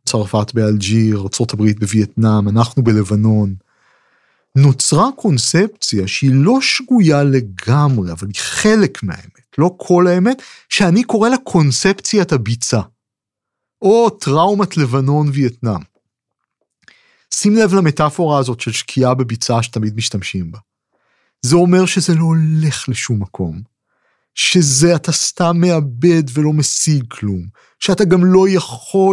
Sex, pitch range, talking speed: male, 110-175 Hz, 115 wpm